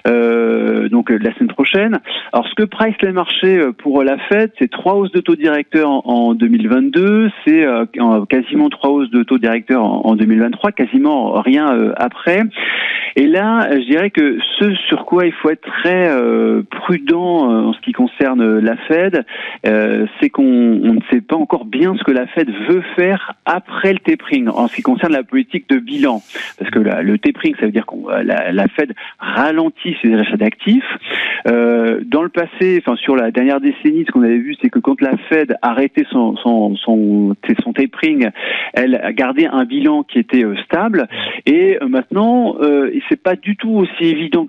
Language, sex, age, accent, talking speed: French, male, 40-59, French, 195 wpm